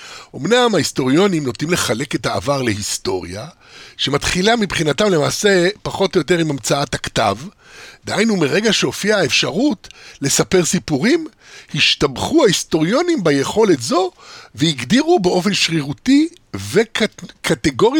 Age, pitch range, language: 50-69, 150-230 Hz, Hebrew